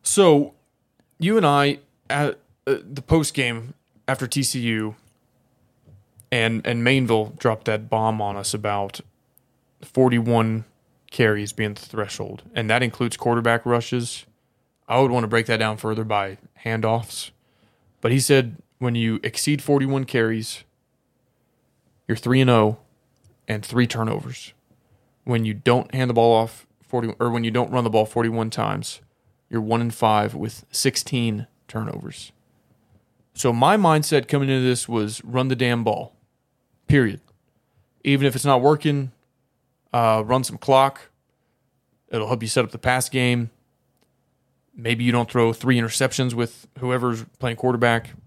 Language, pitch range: English, 115-130 Hz